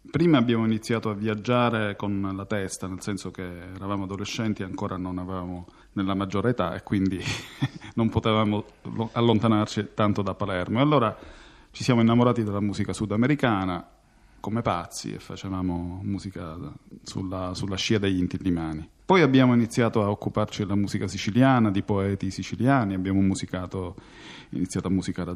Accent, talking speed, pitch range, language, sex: native, 145 wpm, 95-120 Hz, Italian, male